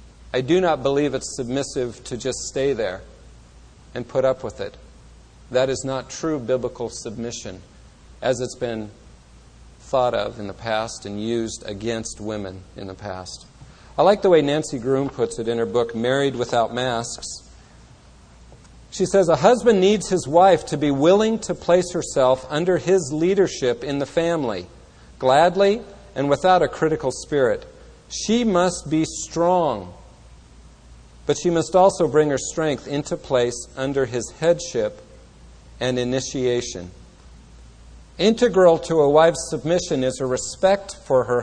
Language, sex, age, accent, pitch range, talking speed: English, male, 50-69, American, 115-165 Hz, 150 wpm